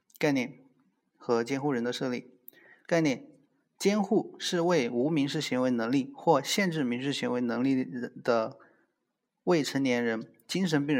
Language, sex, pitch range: Chinese, male, 120-160 Hz